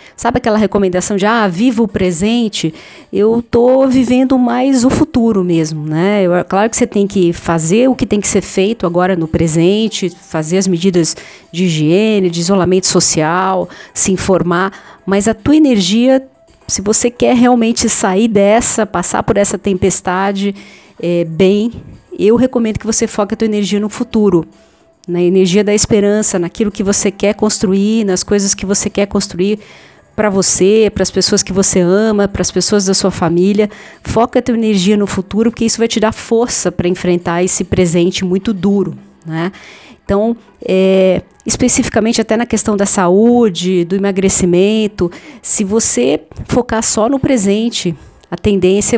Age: 40-59